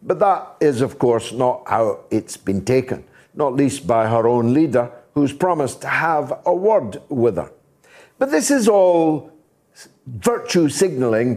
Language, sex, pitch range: English, male, 135-195 Hz